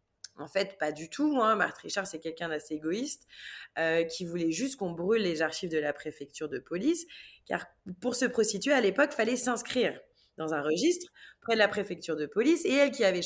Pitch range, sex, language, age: 170-250 Hz, female, French, 20-39